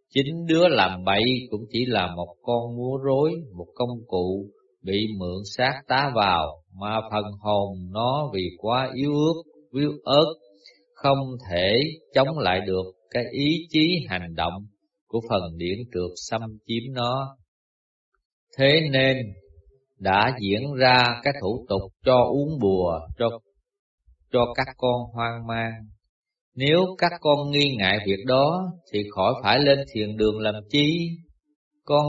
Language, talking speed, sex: Vietnamese, 150 wpm, male